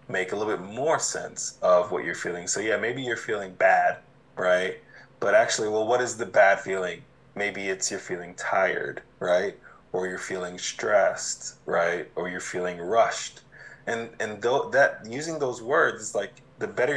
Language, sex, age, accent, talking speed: English, male, 20-39, American, 175 wpm